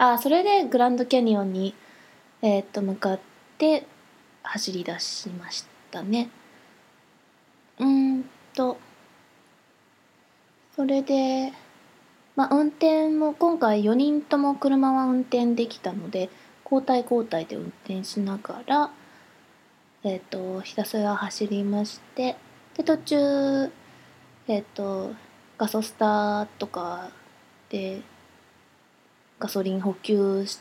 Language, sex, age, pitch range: Japanese, female, 20-39, 200-265 Hz